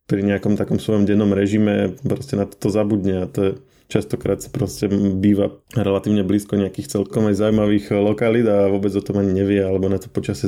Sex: male